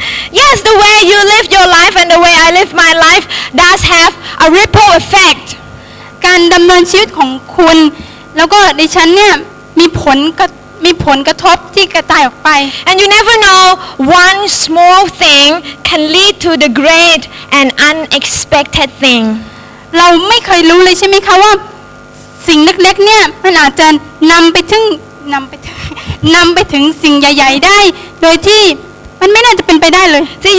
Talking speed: 75 wpm